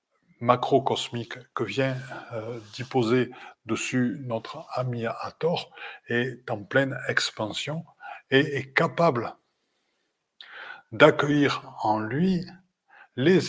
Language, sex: French, male